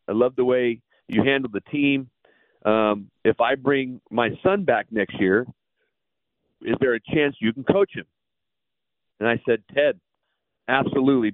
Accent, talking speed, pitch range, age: American, 160 wpm, 115-145 Hz, 40-59